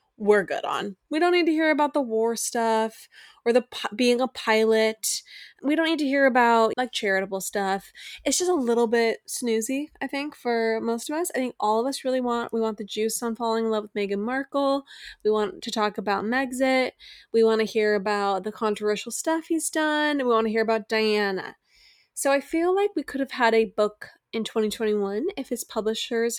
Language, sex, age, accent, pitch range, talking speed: English, female, 20-39, American, 210-270 Hz, 210 wpm